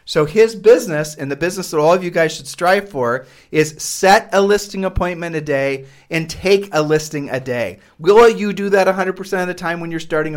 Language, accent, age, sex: English, American, 40-59, male